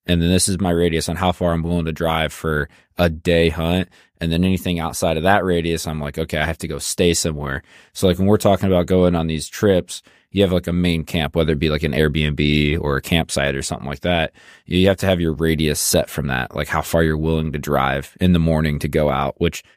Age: 20-39